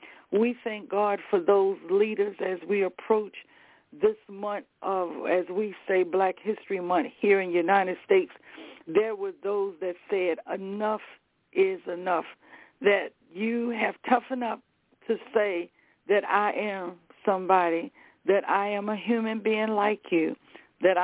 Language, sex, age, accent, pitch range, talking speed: English, female, 60-79, American, 190-220 Hz, 145 wpm